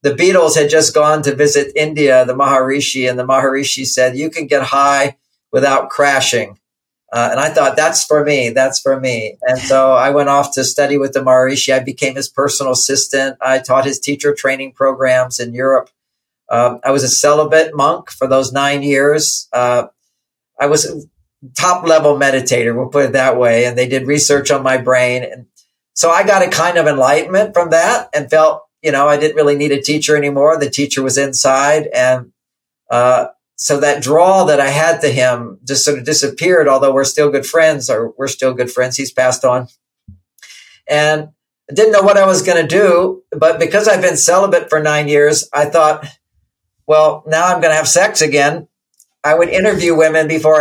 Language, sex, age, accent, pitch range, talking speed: English, male, 50-69, American, 130-155 Hz, 195 wpm